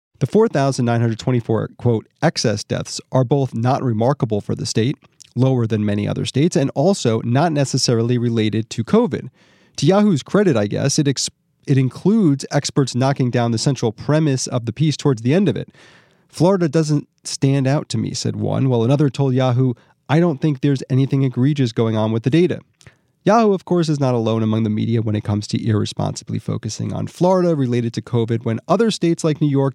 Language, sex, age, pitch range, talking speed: English, male, 30-49, 115-155 Hz, 195 wpm